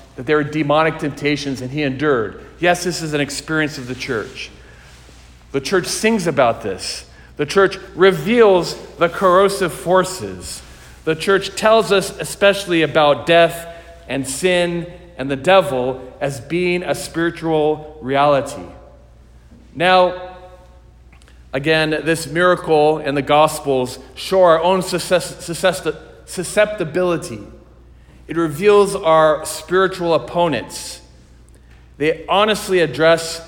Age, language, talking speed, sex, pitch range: 40-59, English, 115 wpm, male, 135-180 Hz